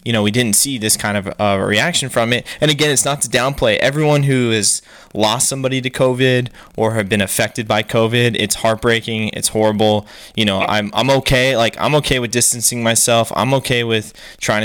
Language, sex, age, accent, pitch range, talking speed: English, male, 20-39, American, 105-130 Hz, 205 wpm